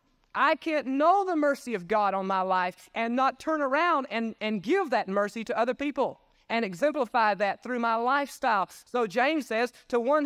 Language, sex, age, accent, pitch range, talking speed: English, male, 30-49, American, 180-245 Hz, 195 wpm